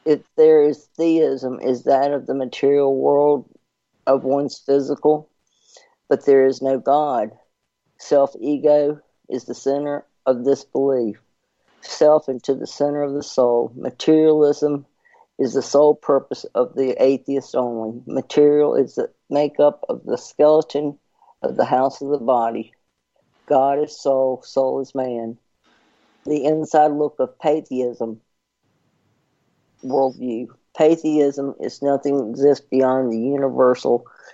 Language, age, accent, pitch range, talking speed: English, 50-69, American, 130-145 Hz, 130 wpm